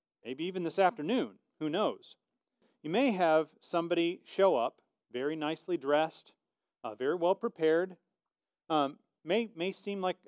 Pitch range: 125-175 Hz